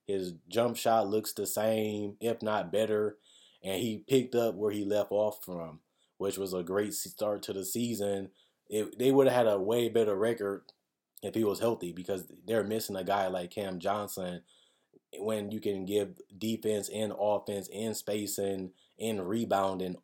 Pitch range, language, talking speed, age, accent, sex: 95-110 Hz, English, 170 wpm, 20-39, American, male